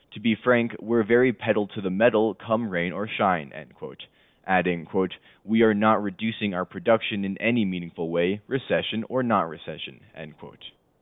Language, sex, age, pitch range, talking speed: English, male, 20-39, 95-115 Hz, 180 wpm